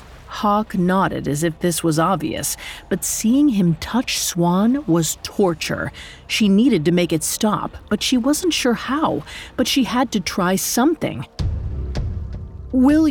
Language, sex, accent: English, female, American